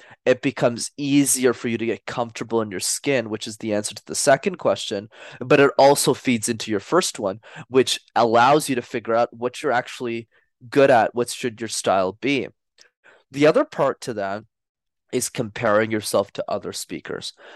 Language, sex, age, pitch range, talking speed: English, male, 20-39, 115-145 Hz, 185 wpm